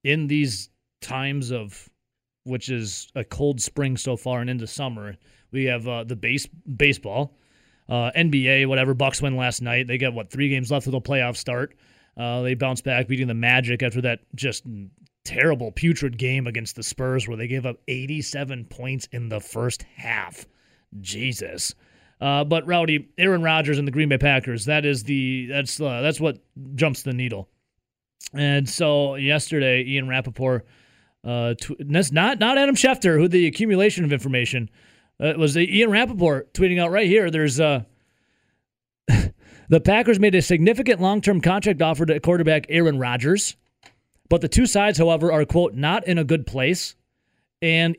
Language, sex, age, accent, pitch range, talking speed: English, male, 30-49, American, 125-165 Hz, 170 wpm